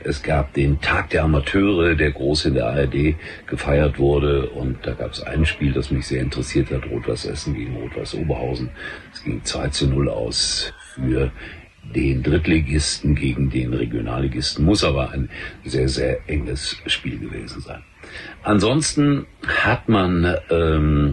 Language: German